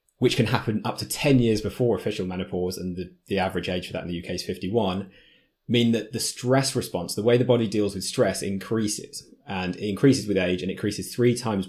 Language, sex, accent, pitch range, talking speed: English, male, British, 90-115 Hz, 225 wpm